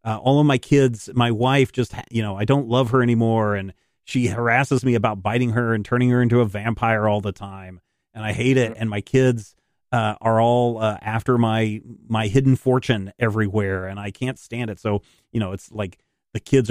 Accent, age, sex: American, 40-59, male